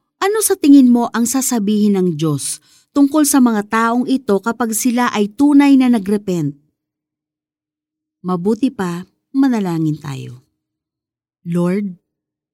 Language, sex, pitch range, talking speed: Filipino, female, 155-220 Hz, 115 wpm